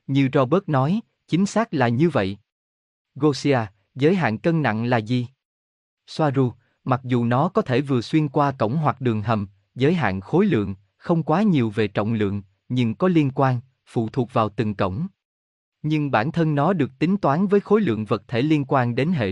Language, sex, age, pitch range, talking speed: Vietnamese, male, 20-39, 110-160 Hz, 195 wpm